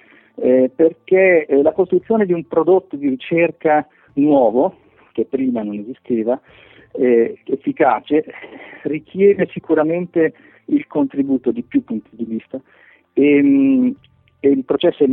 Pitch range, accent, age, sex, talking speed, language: 120-195 Hz, native, 50-69, male, 125 wpm, Italian